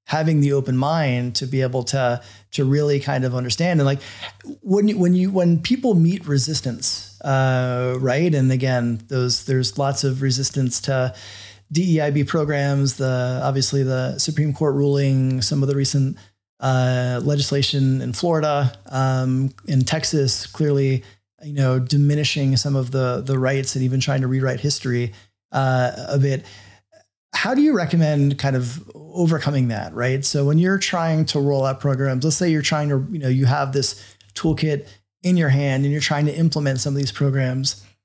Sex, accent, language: male, American, English